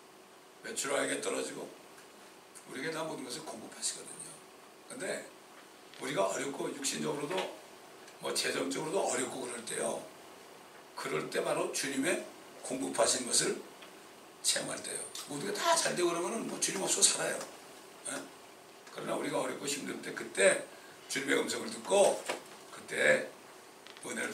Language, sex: English, male